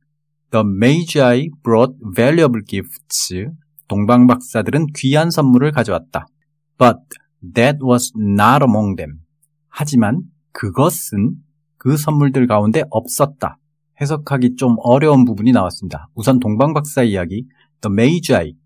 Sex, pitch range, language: male, 110-150 Hz, Korean